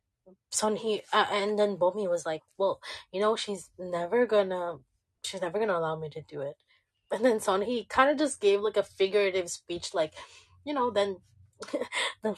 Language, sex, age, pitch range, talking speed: English, female, 20-39, 170-215 Hz, 190 wpm